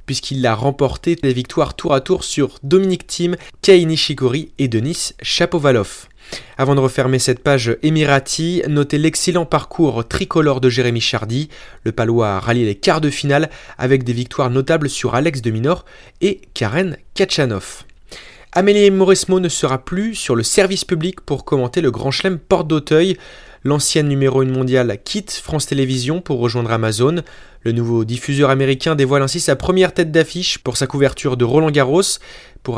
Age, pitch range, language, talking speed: 20-39, 125-165 Hz, French, 165 wpm